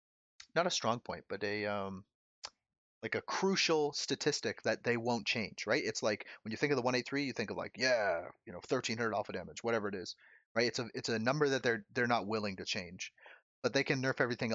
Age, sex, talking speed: 30-49, male, 240 wpm